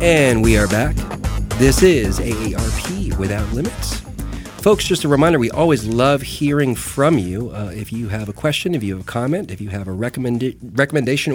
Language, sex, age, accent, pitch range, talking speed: English, male, 40-59, American, 115-150 Hz, 190 wpm